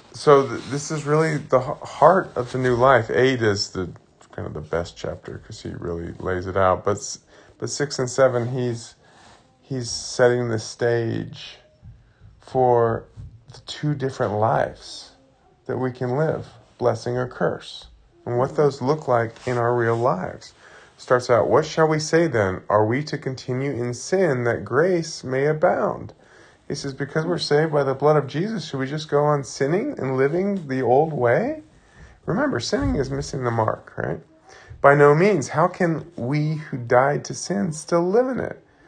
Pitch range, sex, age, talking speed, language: 120-155 Hz, male, 30-49, 180 wpm, English